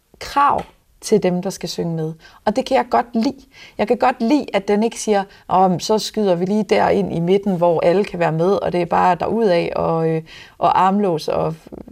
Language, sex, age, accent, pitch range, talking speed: Danish, female, 30-49, native, 175-230 Hz, 220 wpm